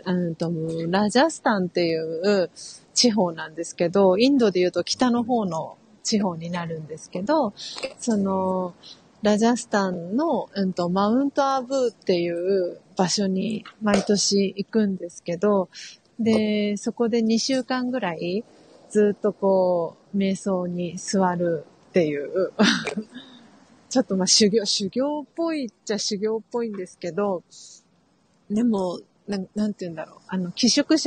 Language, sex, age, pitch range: Japanese, female, 30-49, 180-230 Hz